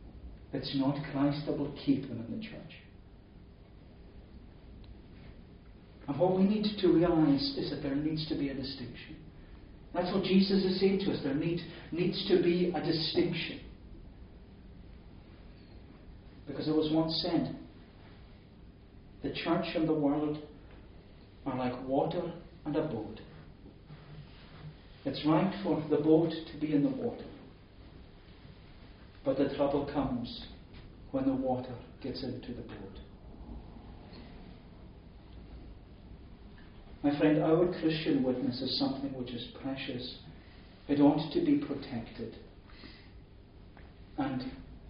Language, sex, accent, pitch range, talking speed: English, male, British, 100-150 Hz, 120 wpm